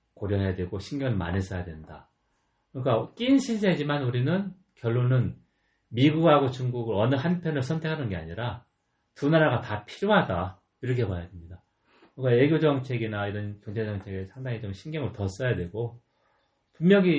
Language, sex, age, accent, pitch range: Korean, male, 40-59, native, 90-135 Hz